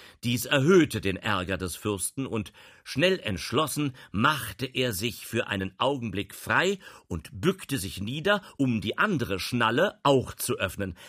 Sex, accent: male, German